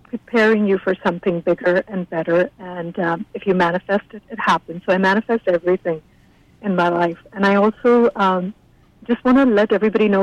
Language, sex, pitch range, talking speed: English, female, 180-220 Hz, 190 wpm